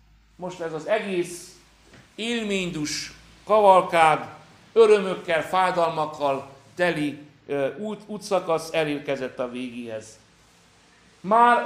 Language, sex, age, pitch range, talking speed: Hungarian, male, 60-79, 135-175 Hz, 75 wpm